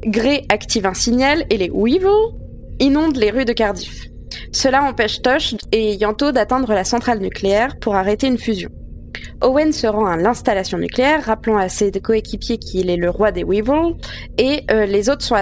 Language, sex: French, female